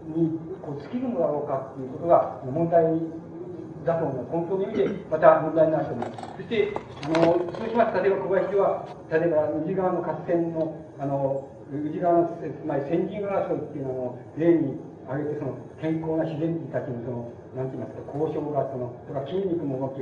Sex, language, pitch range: male, Japanese, 130-165 Hz